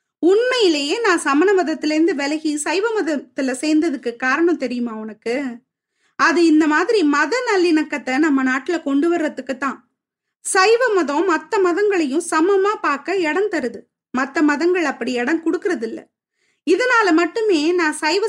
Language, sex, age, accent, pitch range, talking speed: Tamil, female, 20-39, native, 290-365 Hz, 60 wpm